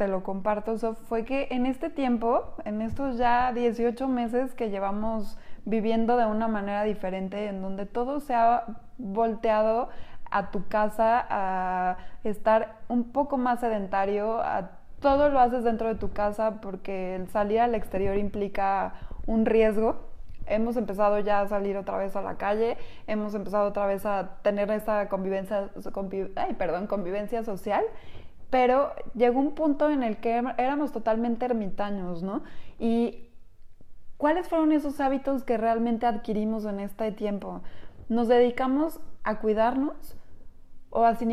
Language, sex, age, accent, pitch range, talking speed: Spanish, female, 20-39, Mexican, 200-235 Hz, 150 wpm